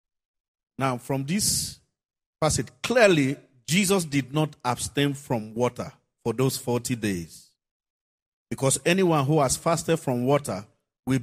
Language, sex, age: English, male, 50-69